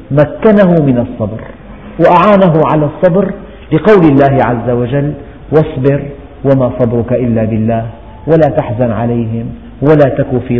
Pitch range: 120-170 Hz